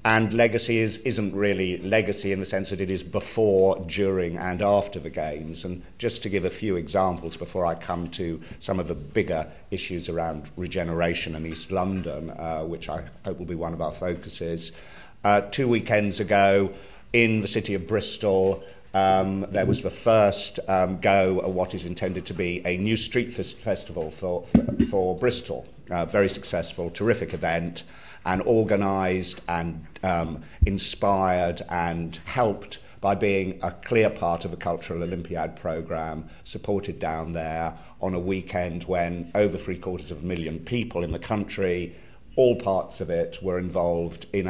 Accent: British